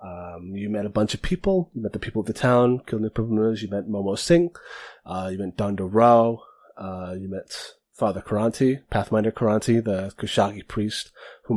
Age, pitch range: 30-49, 100-125 Hz